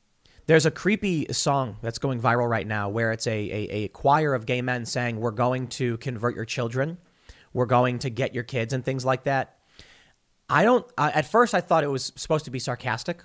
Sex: male